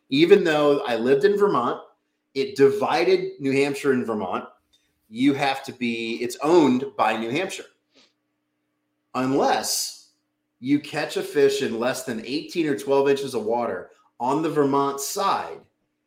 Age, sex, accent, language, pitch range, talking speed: 30-49, male, American, English, 95-145 Hz, 145 wpm